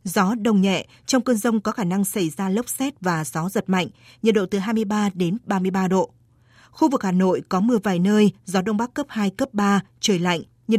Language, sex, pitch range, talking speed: Vietnamese, female, 180-220 Hz, 235 wpm